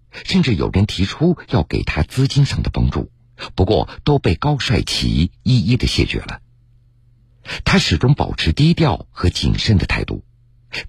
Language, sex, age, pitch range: Chinese, male, 50-69, 90-130 Hz